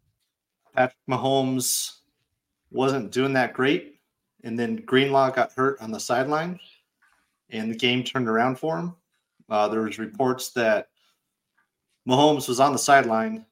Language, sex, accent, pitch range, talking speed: English, male, American, 115-135 Hz, 140 wpm